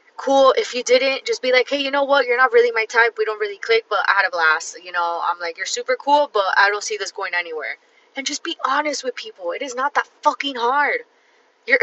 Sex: female